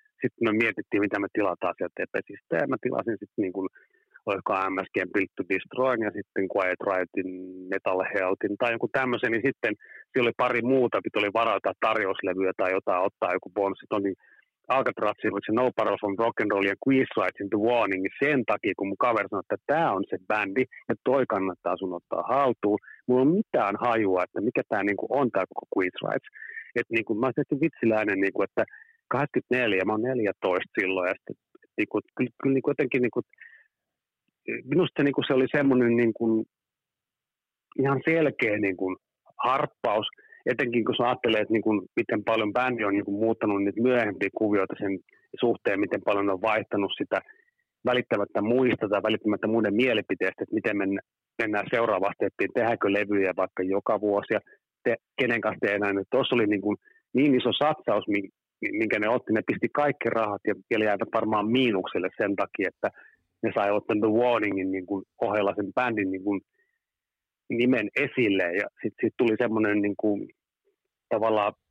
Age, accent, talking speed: 30-49, native, 160 wpm